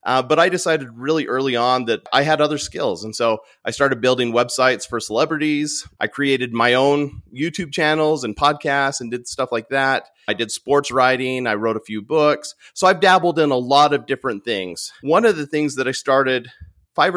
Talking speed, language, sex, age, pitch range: 205 wpm, English, male, 30-49, 120-145 Hz